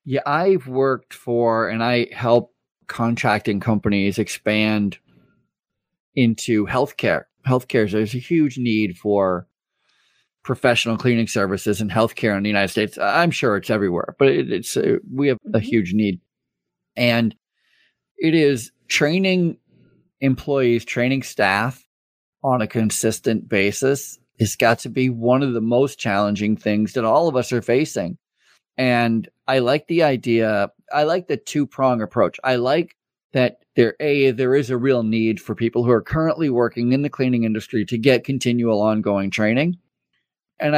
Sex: male